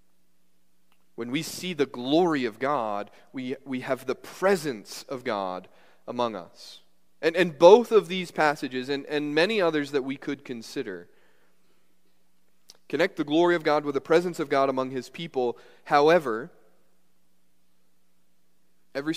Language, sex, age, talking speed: English, male, 30-49, 140 wpm